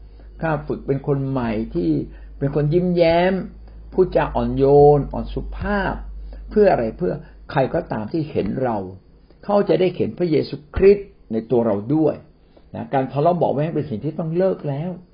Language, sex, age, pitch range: Thai, male, 60-79, 115-175 Hz